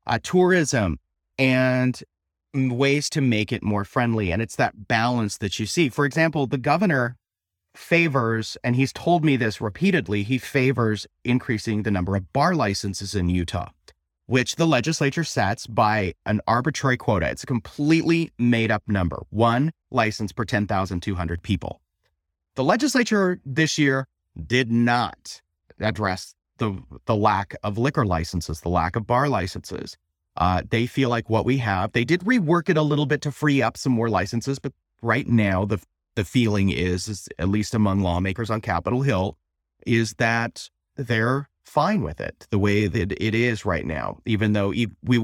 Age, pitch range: 30-49, 100-135 Hz